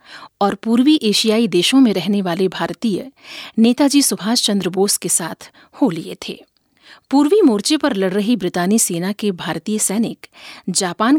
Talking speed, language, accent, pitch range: 150 wpm, Hindi, native, 195-255 Hz